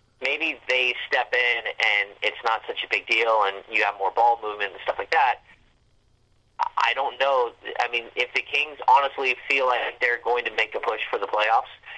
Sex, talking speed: male, 205 wpm